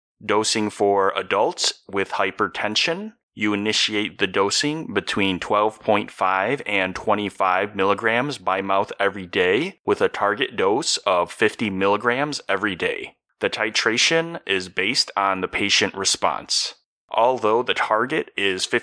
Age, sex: 30-49, male